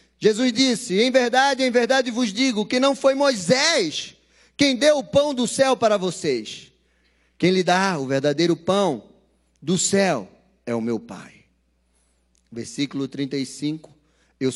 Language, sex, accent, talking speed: Portuguese, male, Brazilian, 145 wpm